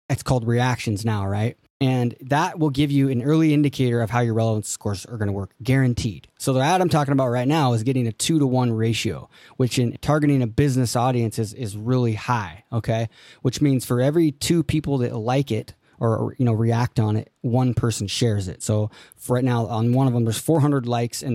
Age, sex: 20-39, male